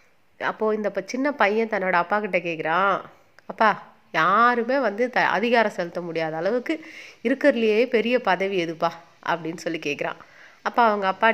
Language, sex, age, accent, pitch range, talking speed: Tamil, female, 30-49, native, 180-240 Hz, 140 wpm